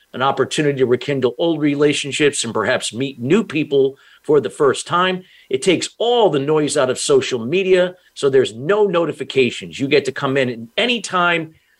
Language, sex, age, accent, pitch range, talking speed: English, male, 50-69, American, 130-170 Hz, 185 wpm